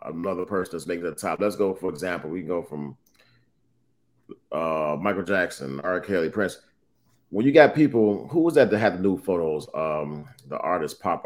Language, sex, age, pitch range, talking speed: English, male, 30-49, 95-130 Hz, 190 wpm